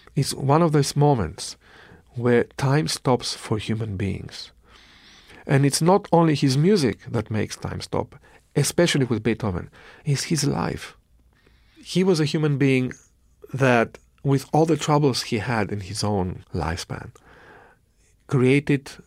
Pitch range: 110-140 Hz